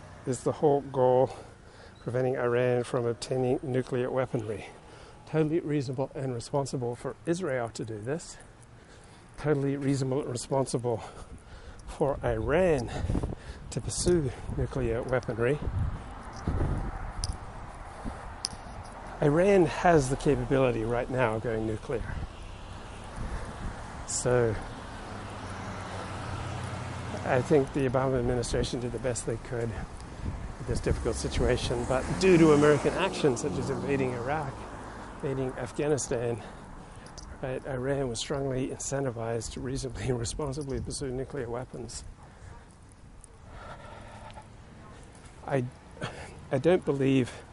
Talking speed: 100 wpm